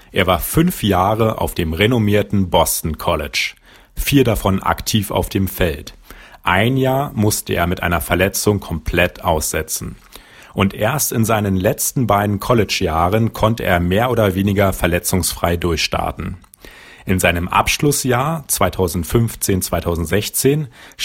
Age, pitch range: 40-59, 90-115 Hz